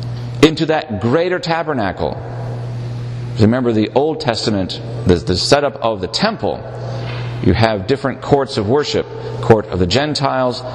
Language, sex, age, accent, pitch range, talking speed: English, male, 40-59, American, 110-130 Hz, 140 wpm